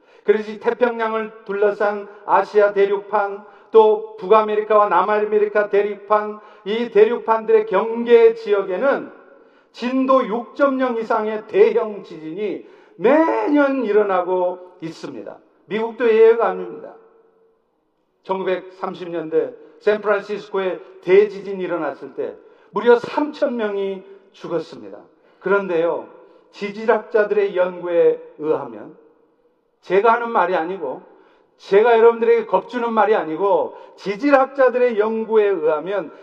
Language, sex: Korean, male